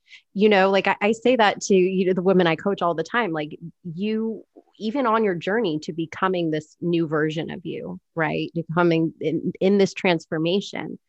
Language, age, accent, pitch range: English, 30-49, American, 165-200 Hz